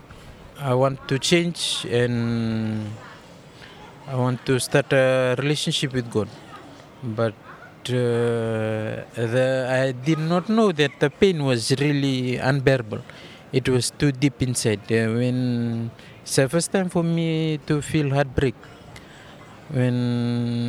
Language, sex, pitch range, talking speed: English, male, 120-150 Hz, 125 wpm